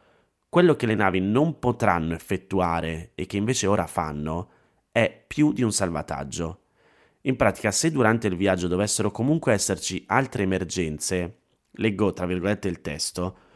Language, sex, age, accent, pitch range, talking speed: Italian, male, 30-49, native, 95-125 Hz, 145 wpm